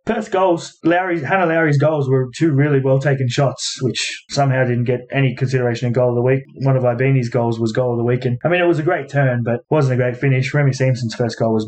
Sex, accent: male, Australian